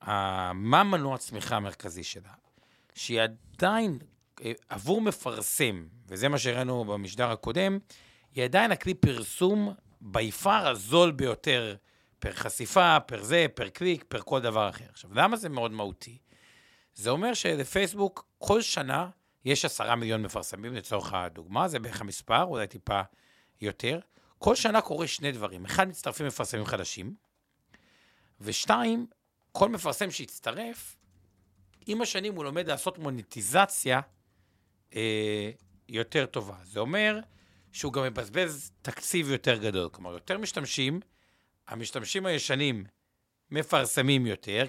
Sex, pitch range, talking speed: male, 105-155 Hz, 120 wpm